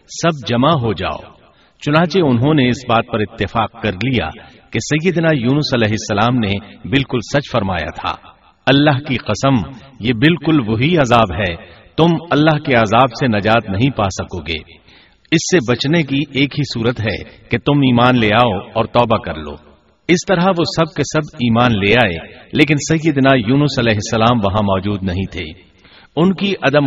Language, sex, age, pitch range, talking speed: Urdu, male, 50-69, 105-145 Hz, 175 wpm